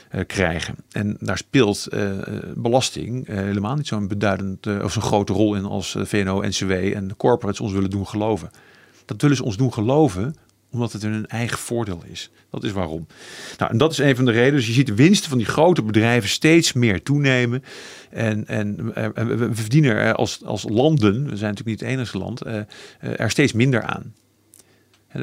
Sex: male